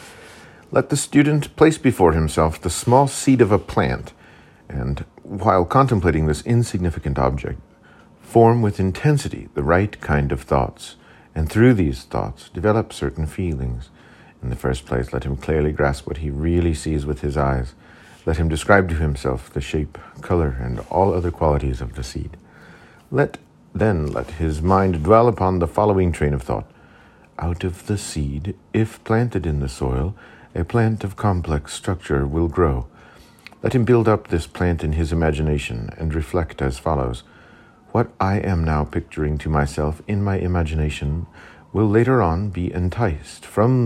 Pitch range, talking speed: 75-100 Hz, 165 wpm